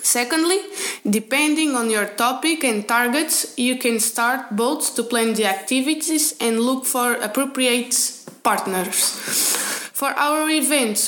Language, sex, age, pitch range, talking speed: Slovak, female, 20-39, 225-275 Hz, 125 wpm